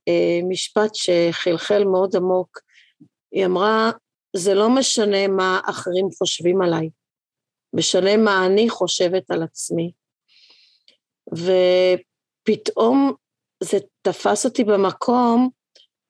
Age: 30-49